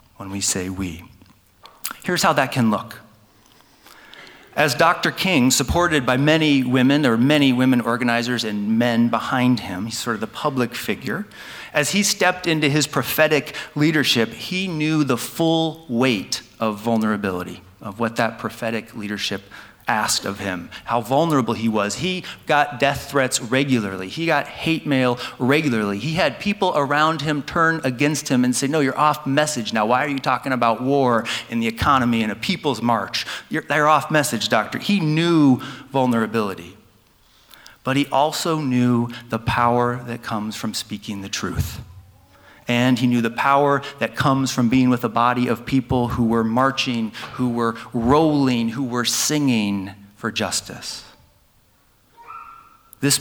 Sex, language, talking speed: male, English, 160 wpm